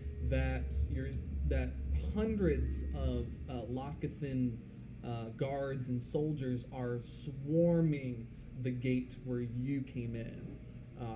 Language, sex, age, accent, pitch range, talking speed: English, male, 20-39, American, 110-140 Hz, 100 wpm